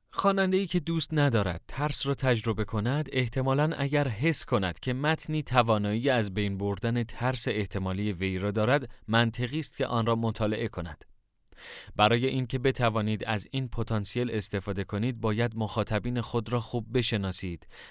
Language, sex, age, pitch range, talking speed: Persian, male, 30-49, 105-135 Hz, 145 wpm